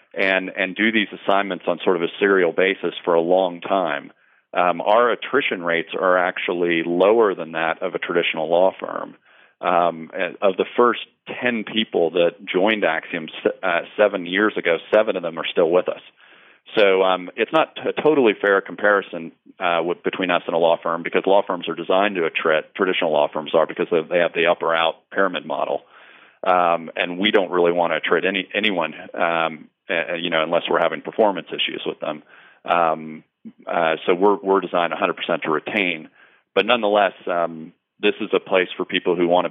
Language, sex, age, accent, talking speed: English, male, 40-59, American, 195 wpm